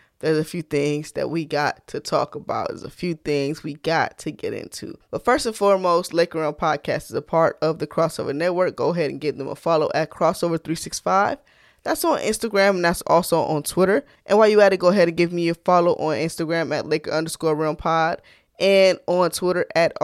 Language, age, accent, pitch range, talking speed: English, 10-29, American, 155-190 Hz, 220 wpm